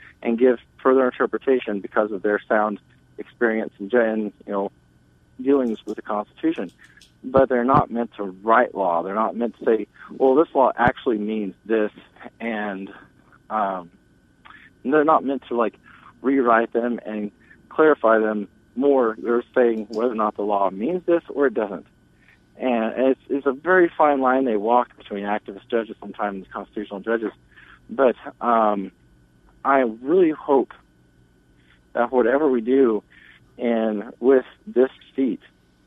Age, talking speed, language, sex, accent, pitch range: 40-59, 145 wpm, English, male, American, 100-125 Hz